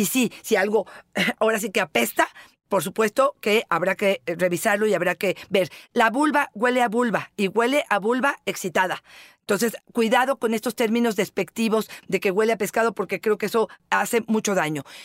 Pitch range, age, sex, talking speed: 200-245 Hz, 50-69, female, 185 wpm